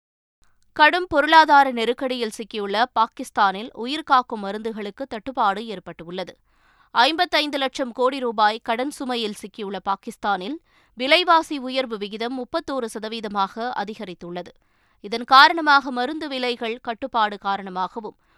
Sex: female